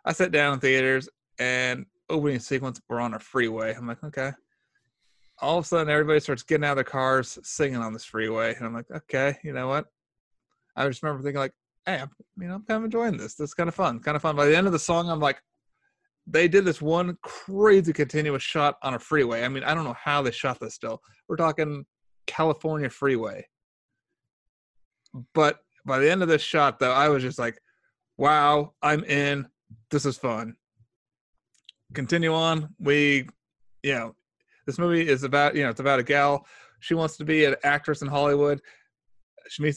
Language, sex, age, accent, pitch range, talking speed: English, male, 30-49, American, 130-160 Hz, 200 wpm